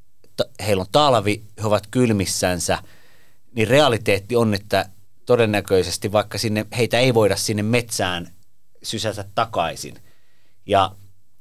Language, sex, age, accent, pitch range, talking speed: Finnish, male, 30-49, native, 90-110 Hz, 110 wpm